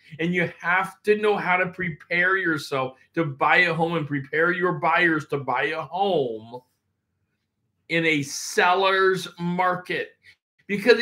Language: English